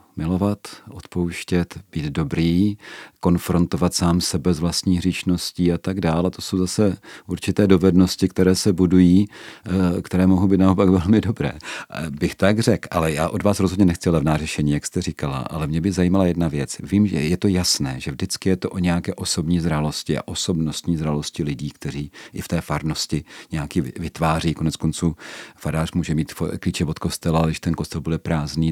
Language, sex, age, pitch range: Czech, male, 40-59, 80-95 Hz